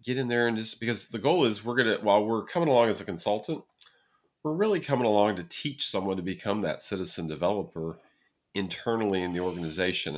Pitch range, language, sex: 85-105 Hz, English, male